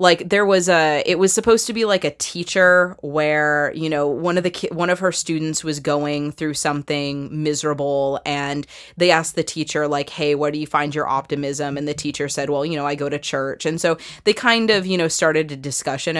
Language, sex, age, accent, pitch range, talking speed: English, female, 20-39, American, 145-175 Hz, 225 wpm